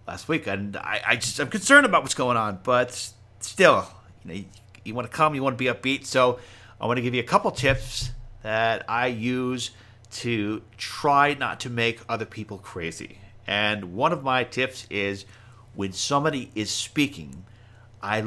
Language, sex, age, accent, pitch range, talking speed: English, male, 40-59, American, 100-120 Hz, 175 wpm